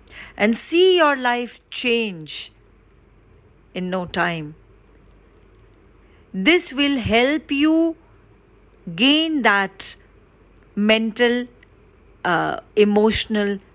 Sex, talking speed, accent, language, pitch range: female, 75 wpm, Indian, English, 170-245 Hz